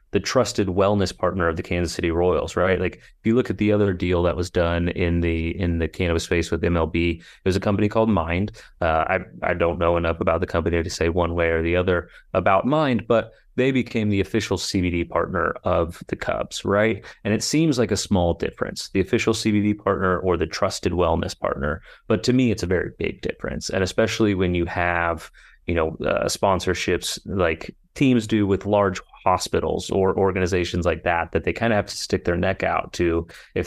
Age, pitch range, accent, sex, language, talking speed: 30-49, 85-110 Hz, American, male, English, 210 wpm